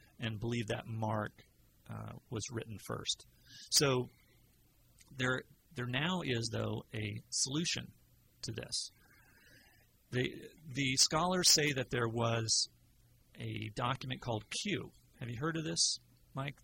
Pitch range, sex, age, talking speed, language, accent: 115-130 Hz, male, 40-59, 125 wpm, English, American